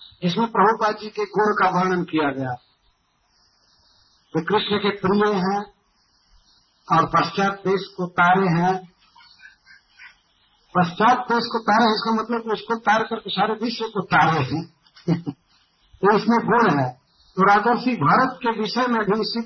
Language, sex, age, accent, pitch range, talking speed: Hindi, male, 50-69, native, 175-220 Hz, 145 wpm